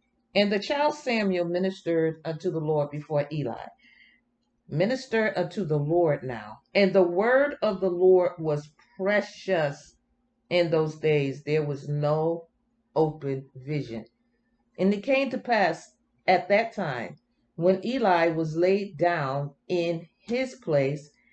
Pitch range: 160-240 Hz